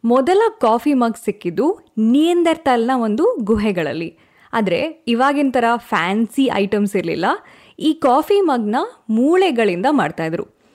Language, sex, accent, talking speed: Kannada, female, native, 105 wpm